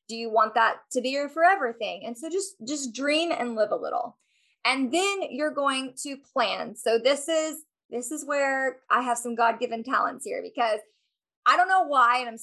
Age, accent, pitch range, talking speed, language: 20-39, American, 230-290 Hz, 205 wpm, English